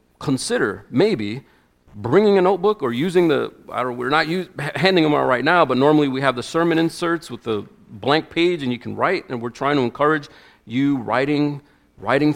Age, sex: 40-59, male